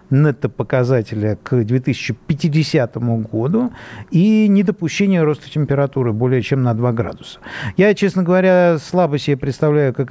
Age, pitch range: 50-69, 120-165 Hz